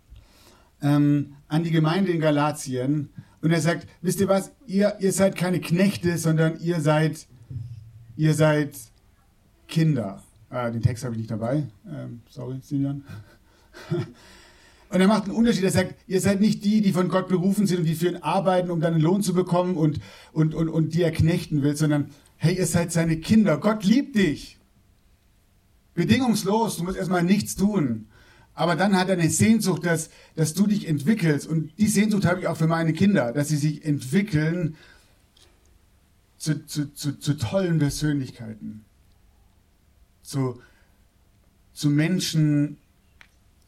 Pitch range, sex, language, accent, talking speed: 105-170 Hz, male, German, German, 160 wpm